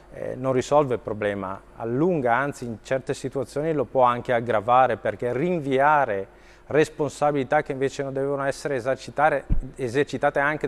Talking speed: 135 wpm